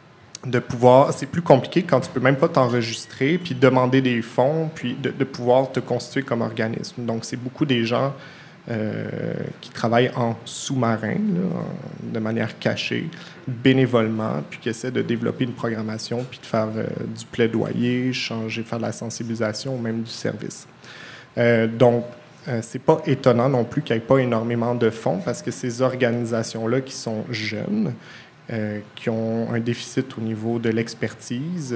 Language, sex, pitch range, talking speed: French, male, 115-130 Hz, 175 wpm